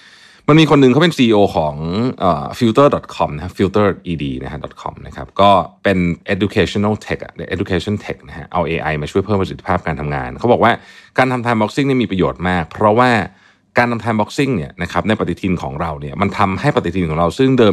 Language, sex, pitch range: Thai, male, 85-115 Hz